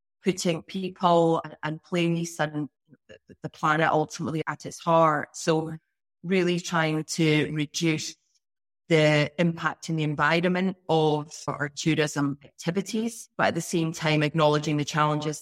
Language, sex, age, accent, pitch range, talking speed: English, female, 30-49, British, 145-165 Hz, 130 wpm